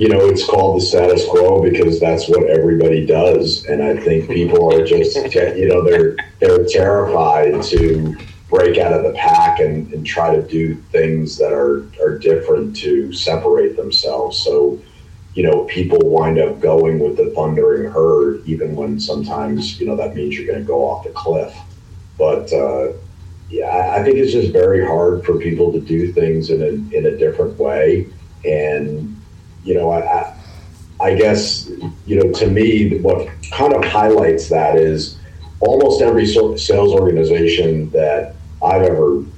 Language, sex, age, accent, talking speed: English, male, 40-59, American, 170 wpm